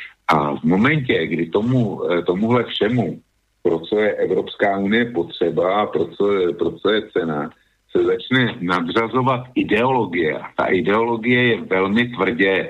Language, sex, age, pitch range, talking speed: Slovak, male, 50-69, 90-110 Hz, 125 wpm